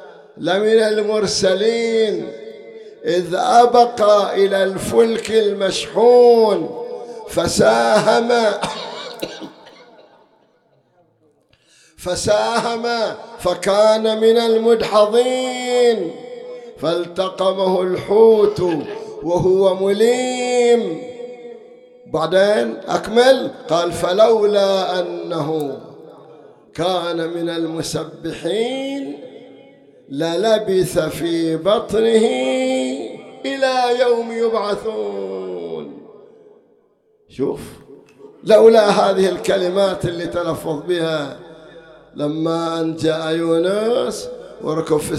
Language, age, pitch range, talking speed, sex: English, 50-69, 170-235 Hz, 55 wpm, male